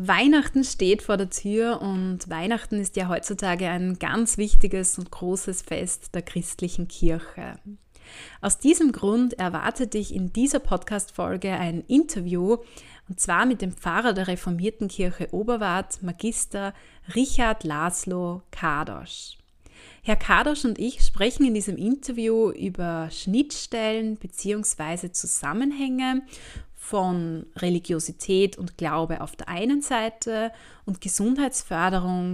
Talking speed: 120 wpm